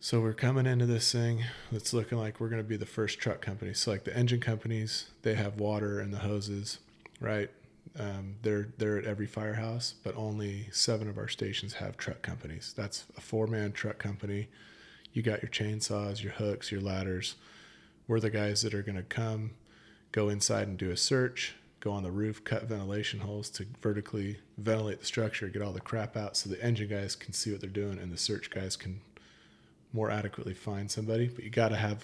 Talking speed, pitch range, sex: 210 wpm, 105-115 Hz, male